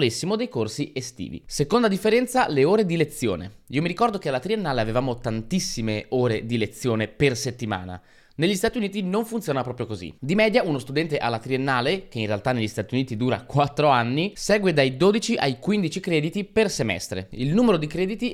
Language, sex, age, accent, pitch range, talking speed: Italian, male, 20-39, native, 120-190 Hz, 185 wpm